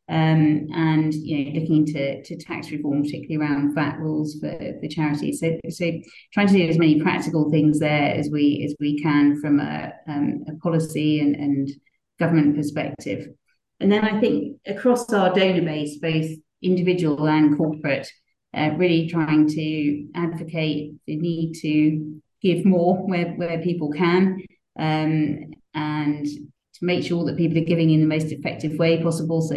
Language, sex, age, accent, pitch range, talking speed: English, female, 30-49, British, 150-170 Hz, 165 wpm